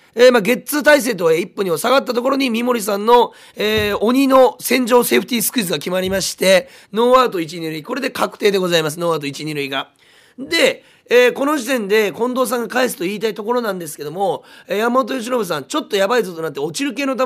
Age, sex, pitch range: 30-49, male, 185-270 Hz